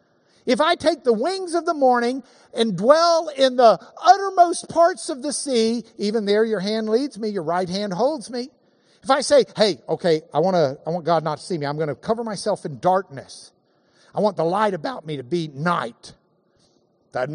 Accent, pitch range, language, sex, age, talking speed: American, 185-280 Hz, English, male, 50-69, 205 wpm